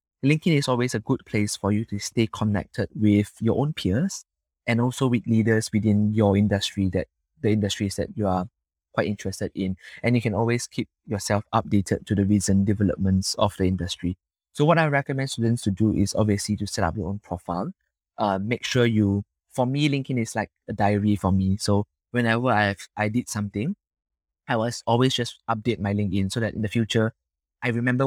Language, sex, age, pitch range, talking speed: English, male, 20-39, 95-115 Hz, 200 wpm